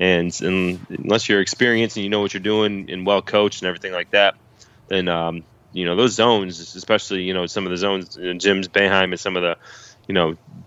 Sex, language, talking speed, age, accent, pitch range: male, English, 220 wpm, 20-39, American, 90-110 Hz